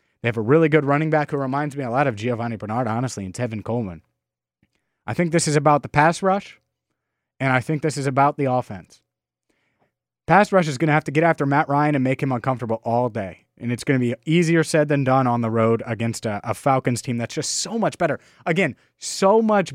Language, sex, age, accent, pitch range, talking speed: English, male, 30-49, American, 110-150 Hz, 235 wpm